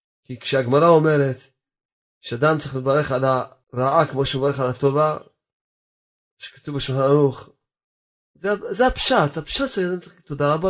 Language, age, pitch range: Hebrew, 40-59, 130-155 Hz